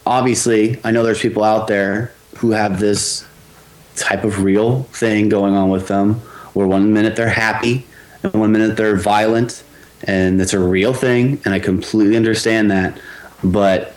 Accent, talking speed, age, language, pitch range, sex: American, 170 wpm, 30-49, English, 105-155 Hz, male